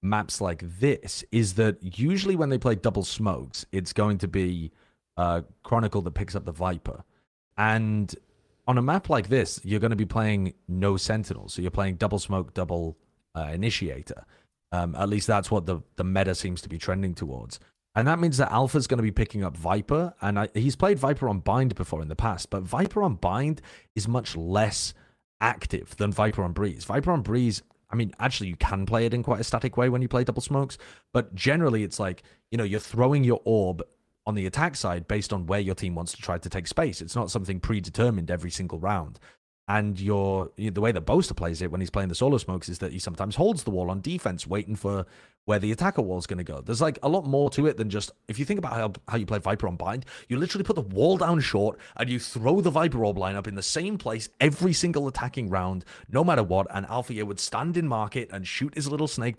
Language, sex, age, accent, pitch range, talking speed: English, male, 30-49, British, 95-125 Hz, 235 wpm